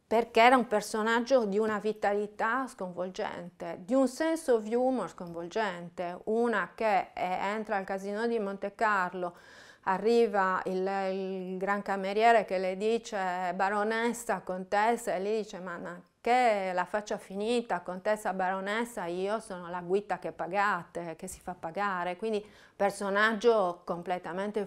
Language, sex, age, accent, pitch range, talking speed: Italian, female, 30-49, native, 185-225 Hz, 135 wpm